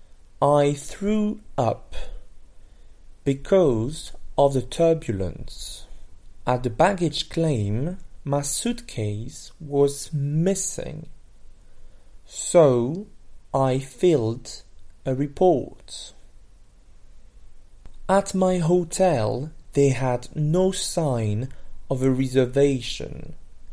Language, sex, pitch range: French, male, 100-150 Hz